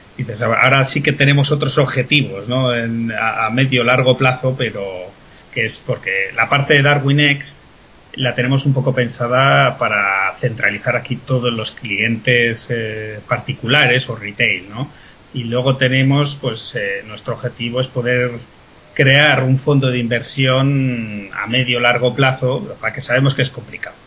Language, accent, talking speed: Spanish, Spanish, 155 wpm